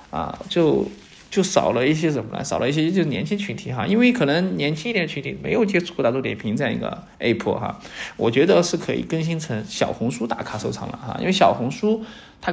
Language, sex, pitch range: Chinese, male, 110-165 Hz